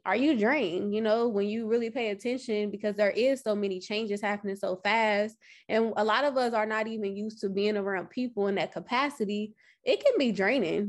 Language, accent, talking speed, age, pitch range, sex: English, American, 215 wpm, 20-39, 205-240 Hz, female